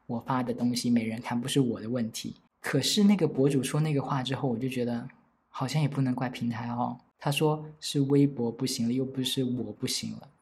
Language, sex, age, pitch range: Chinese, male, 20-39, 120-150 Hz